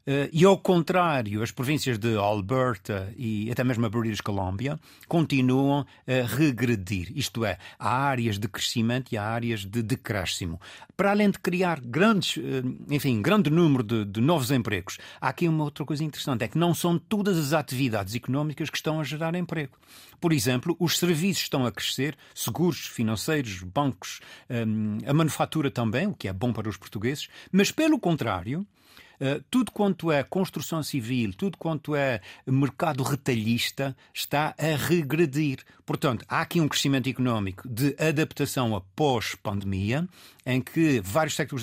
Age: 50-69